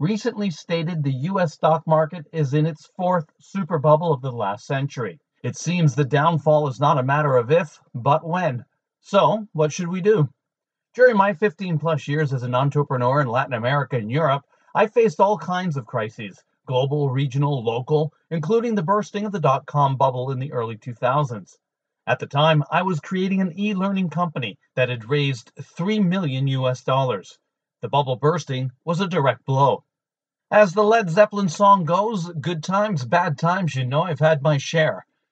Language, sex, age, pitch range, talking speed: English, male, 40-59, 140-180 Hz, 175 wpm